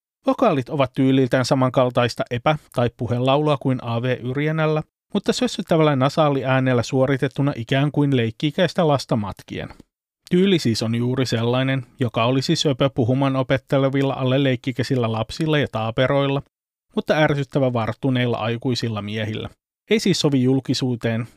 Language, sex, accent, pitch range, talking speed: Finnish, male, native, 120-150 Hz, 120 wpm